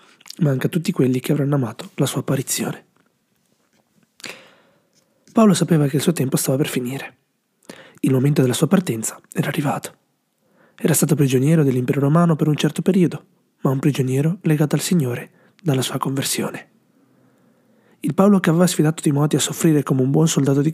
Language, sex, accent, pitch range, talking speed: Italian, male, native, 135-175 Hz, 160 wpm